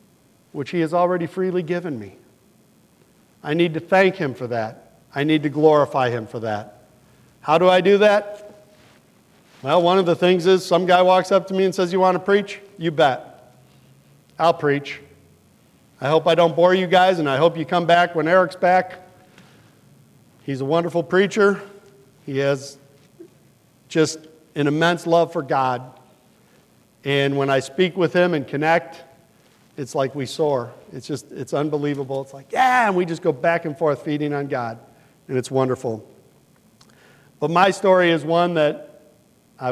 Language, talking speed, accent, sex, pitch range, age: English, 175 wpm, American, male, 140-180 Hz, 50-69